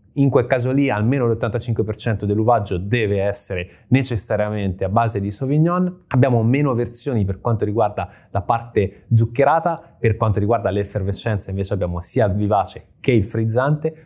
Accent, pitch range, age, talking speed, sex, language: native, 100-125 Hz, 20-39, 150 wpm, male, Italian